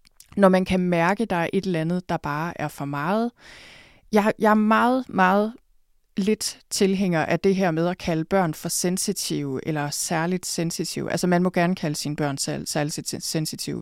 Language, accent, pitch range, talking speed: Danish, native, 160-205 Hz, 180 wpm